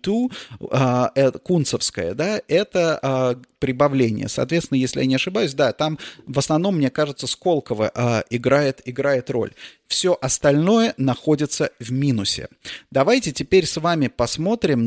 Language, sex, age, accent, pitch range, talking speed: Russian, male, 30-49, native, 125-160 Hz, 115 wpm